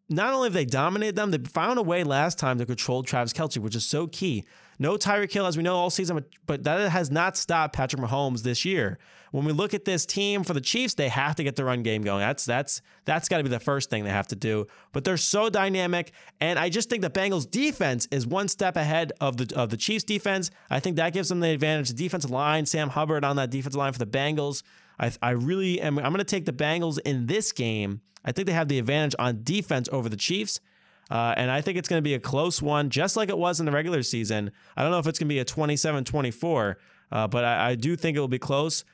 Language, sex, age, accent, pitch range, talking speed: English, male, 20-39, American, 130-175 Hz, 260 wpm